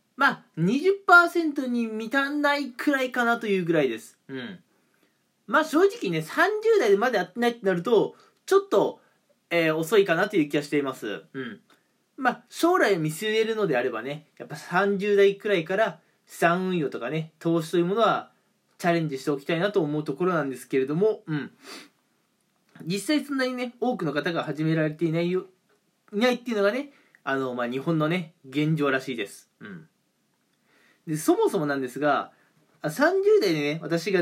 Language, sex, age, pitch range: Japanese, male, 20-39, 155-255 Hz